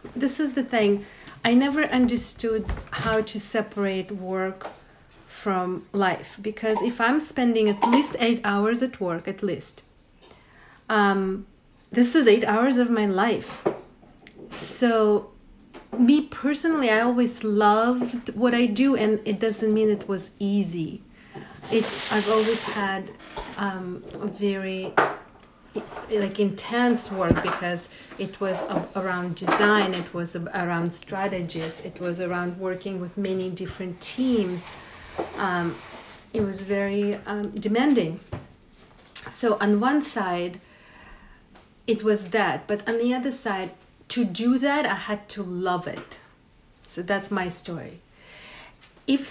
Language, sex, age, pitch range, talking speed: English, female, 40-59, 195-240 Hz, 130 wpm